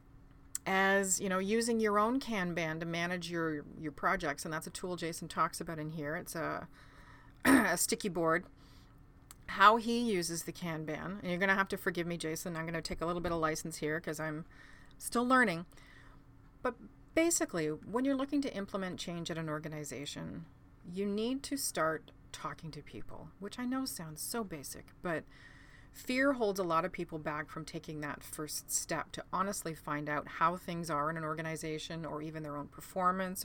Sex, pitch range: female, 155-195 Hz